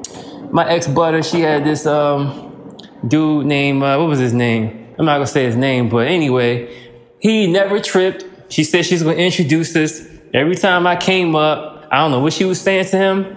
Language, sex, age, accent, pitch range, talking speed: English, male, 20-39, American, 135-180 Hz, 205 wpm